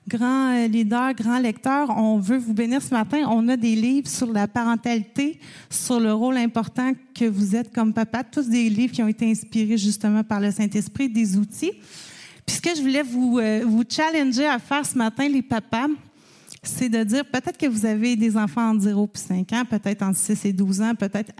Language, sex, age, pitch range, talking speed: French, female, 30-49, 215-260 Hz, 210 wpm